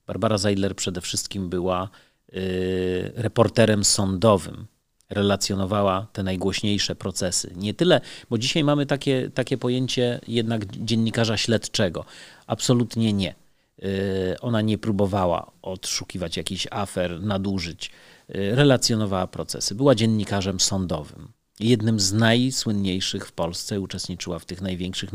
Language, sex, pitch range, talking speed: Polish, male, 95-115 Hz, 105 wpm